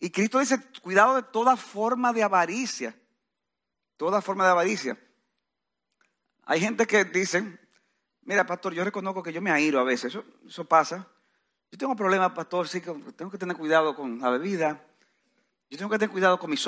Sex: male